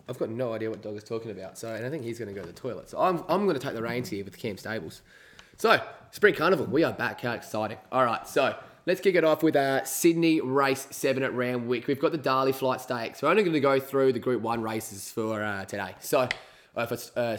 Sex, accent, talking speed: male, Australian, 265 wpm